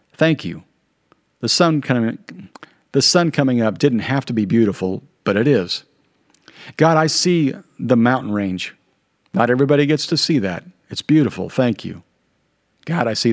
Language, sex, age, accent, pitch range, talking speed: English, male, 50-69, American, 100-135 Hz, 155 wpm